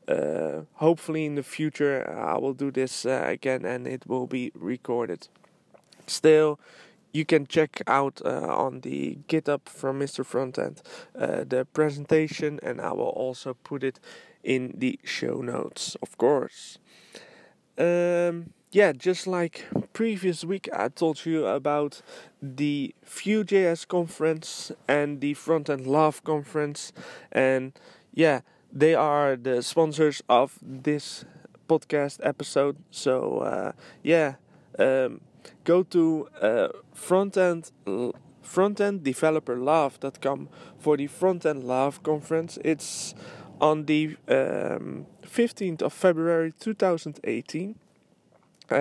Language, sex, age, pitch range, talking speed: English, male, 20-39, 140-175 Hz, 115 wpm